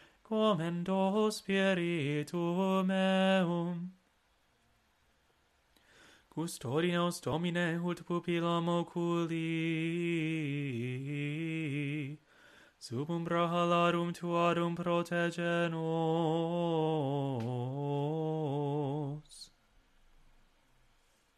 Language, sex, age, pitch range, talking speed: English, male, 30-49, 165-220 Hz, 35 wpm